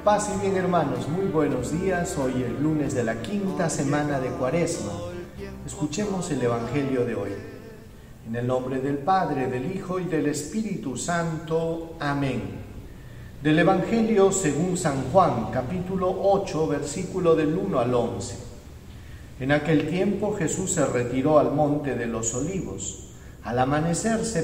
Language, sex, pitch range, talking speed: Spanish, male, 125-180 Hz, 145 wpm